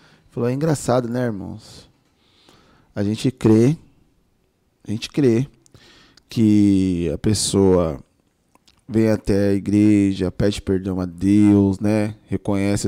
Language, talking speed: Portuguese, 105 wpm